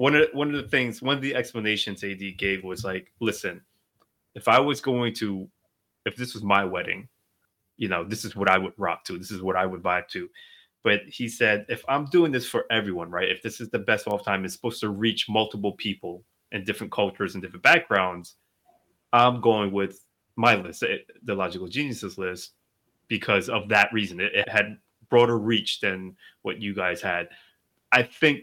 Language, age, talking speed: English, 20-39, 205 wpm